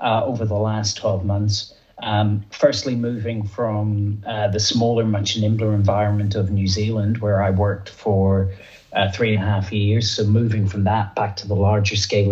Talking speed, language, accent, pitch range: 185 wpm, English, British, 100-110 Hz